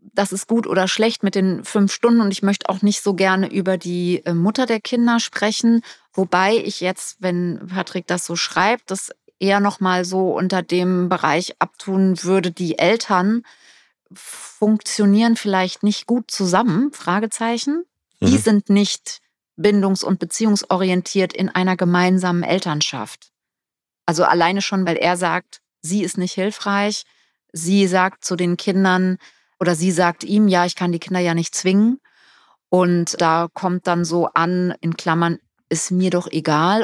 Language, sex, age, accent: German, female, 30-49, German